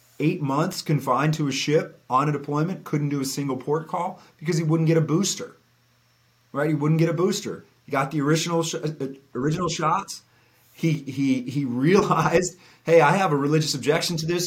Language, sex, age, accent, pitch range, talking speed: English, male, 30-49, American, 135-165 Hz, 190 wpm